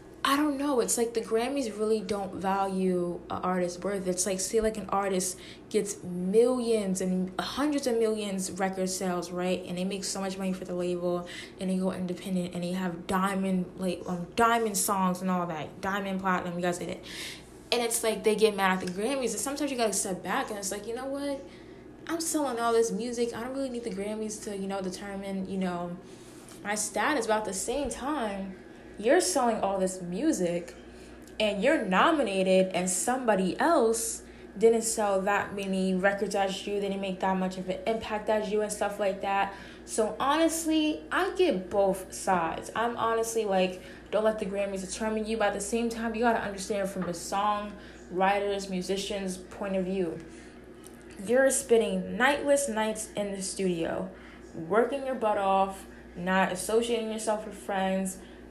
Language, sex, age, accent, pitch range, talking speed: English, female, 10-29, American, 185-225 Hz, 185 wpm